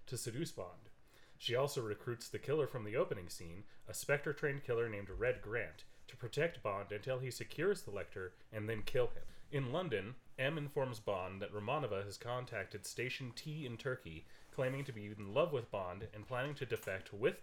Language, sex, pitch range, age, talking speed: English, male, 105-135 Hz, 30-49, 195 wpm